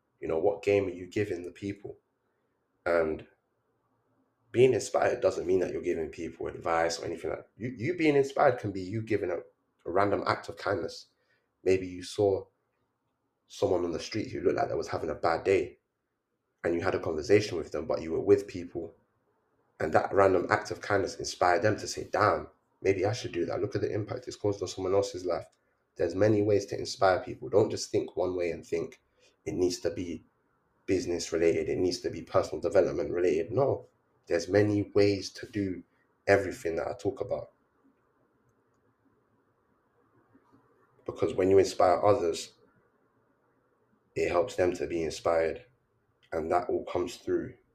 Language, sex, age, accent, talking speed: English, male, 20-39, British, 180 wpm